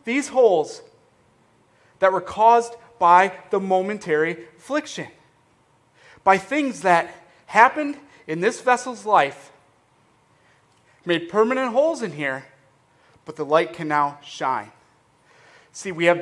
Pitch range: 140-185 Hz